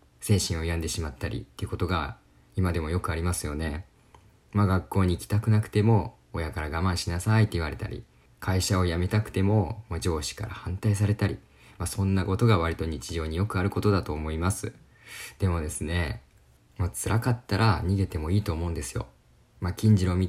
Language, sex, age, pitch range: Japanese, male, 20-39, 85-105 Hz